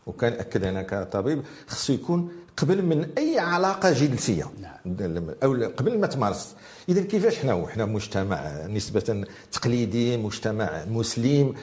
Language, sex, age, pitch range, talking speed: French, male, 50-69, 110-155 Hz, 115 wpm